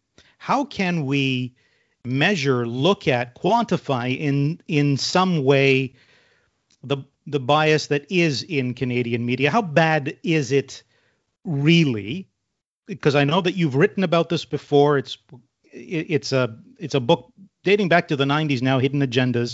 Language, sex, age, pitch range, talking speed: English, male, 50-69, 125-160 Hz, 145 wpm